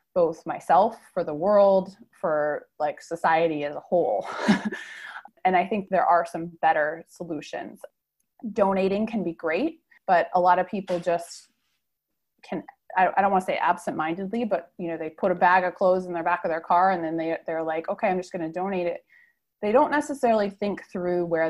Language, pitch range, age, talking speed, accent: English, 165-205 Hz, 20-39, 195 wpm, American